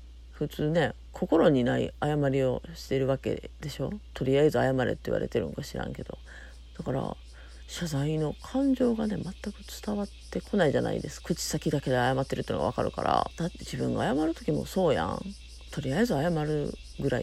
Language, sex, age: Japanese, female, 40-59